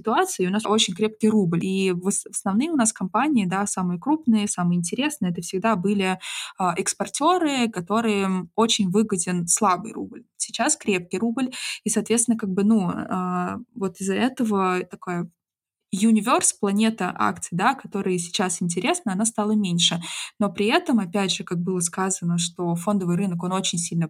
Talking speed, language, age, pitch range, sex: 160 wpm, Russian, 20-39, 185-220 Hz, female